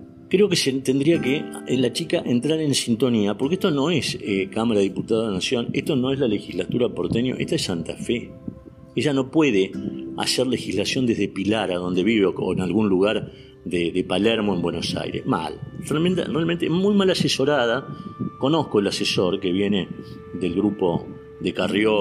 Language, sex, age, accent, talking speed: Spanish, male, 50-69, Argentinian, 175 wpm